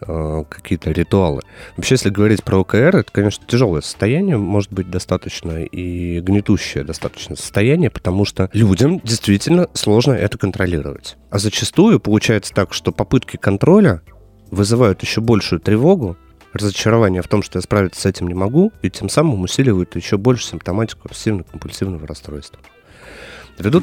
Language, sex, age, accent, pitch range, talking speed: Russian, male, 30-49, native, 85-110 Hz, 140 wpm